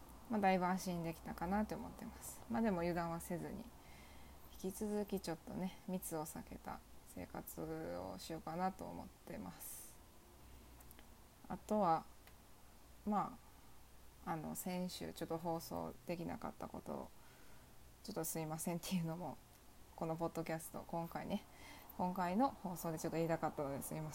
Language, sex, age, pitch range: Japanese, female, 20-39, 165-210 Hz